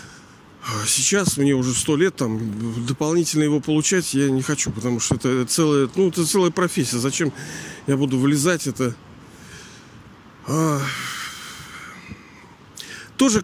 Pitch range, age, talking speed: 135-170 Hz, 40-59, 120 wpm